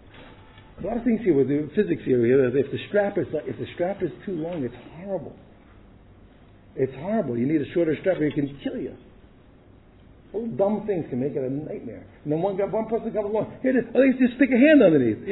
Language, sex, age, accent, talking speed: English, male, 50-69, American, 225 wpm